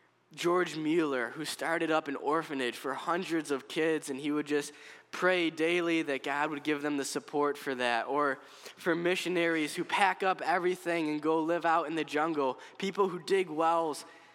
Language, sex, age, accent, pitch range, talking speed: English, male, 10-29, American, 140-170 Hz, 185 wpm